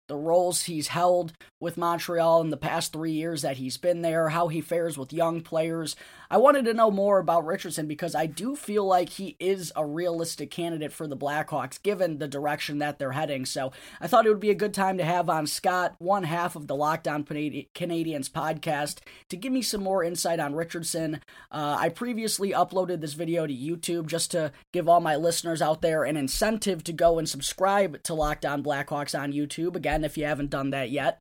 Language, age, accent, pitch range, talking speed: English, 20-39, American, 155-185 Hz, 210 wpm